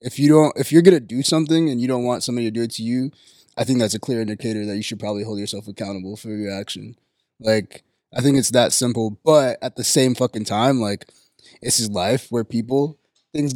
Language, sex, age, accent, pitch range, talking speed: English, male, 20-39, American, 110-145 Hz, 235 wpm